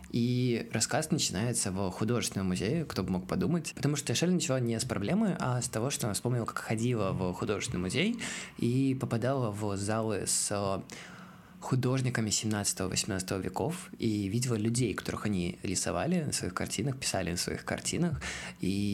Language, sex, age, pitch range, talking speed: Russian, male, 20-39, 110-135 Hz, 160 wpm